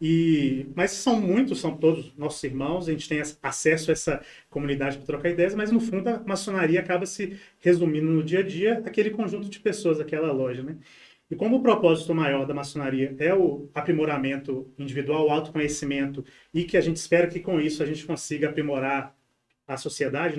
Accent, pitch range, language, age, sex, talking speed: Brazilian, 145-180 Hz, Portuguese, 30-49, male, 190 wpm